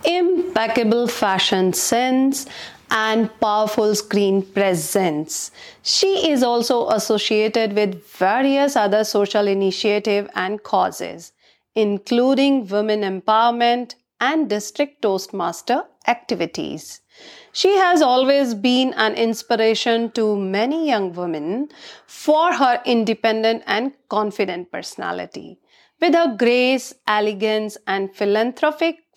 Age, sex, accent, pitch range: 40-59, female, native, 210-290 Hz